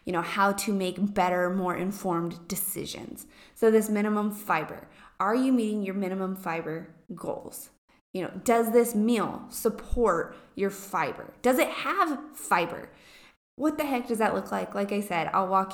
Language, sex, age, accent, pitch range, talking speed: English, female, 20-39, American, 185-225 Hz, 170 wpm